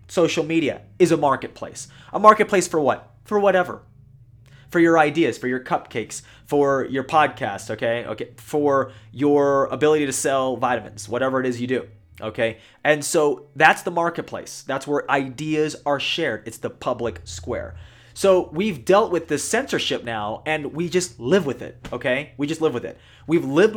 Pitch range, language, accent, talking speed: 120-160 Hz, English, American, 175 wpm